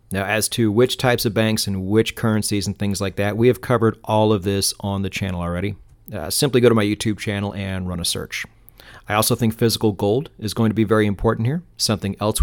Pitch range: 105-120 Hz